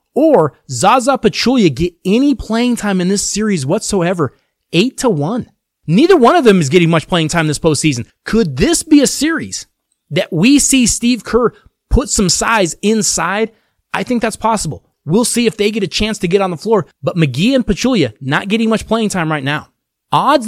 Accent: American